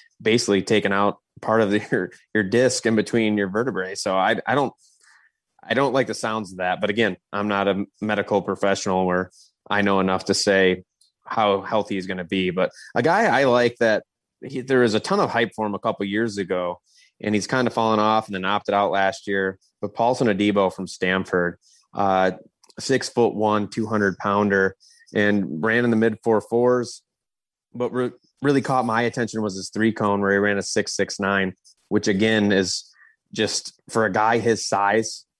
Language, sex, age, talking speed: English, male, 20-39, 200 wpm